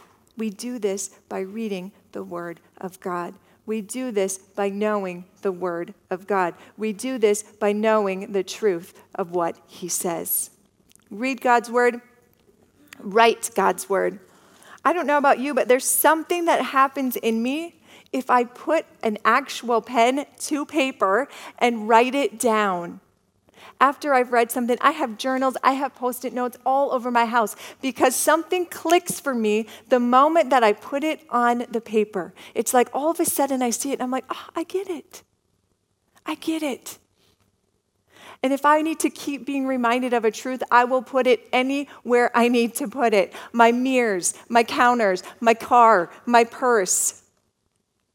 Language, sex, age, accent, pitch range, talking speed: English, female, 40-59, American, 210-265 Hz, 170 wpm